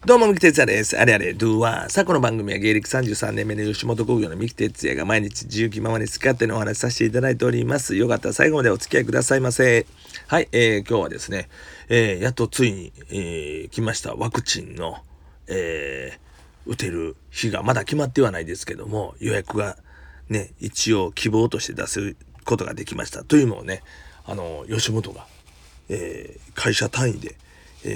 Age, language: 40-59, Japanese